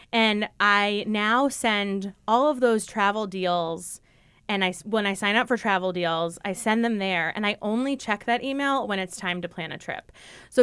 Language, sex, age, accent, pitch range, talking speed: English, female, 20-39, American, 180-240 Hz, 200 wpm